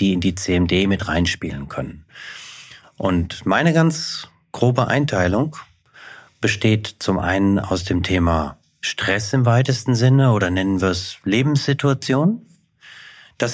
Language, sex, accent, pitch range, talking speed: German, male, German, 100-130 Hz, 125 wpm